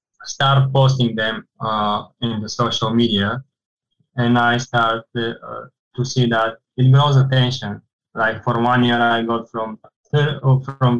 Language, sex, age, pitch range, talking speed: English, male, 20-39, 110-130 Hz, 145 wpm